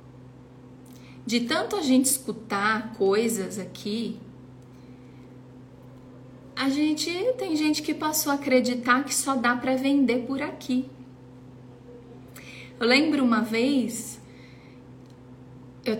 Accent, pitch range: Brazilian, 190-255 Hz